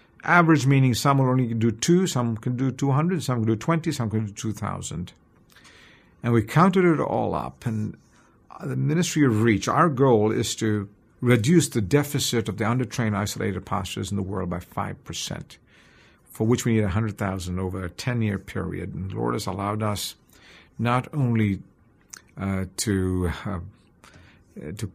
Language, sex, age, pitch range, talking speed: English, male, 50-69, 100-130 Hz, 175 wpm